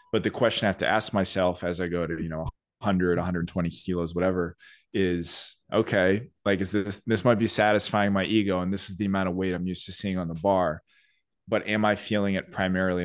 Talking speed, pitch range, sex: 225 wpm, 90-110 Hz, male